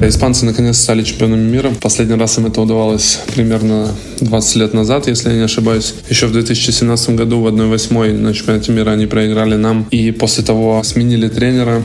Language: Russian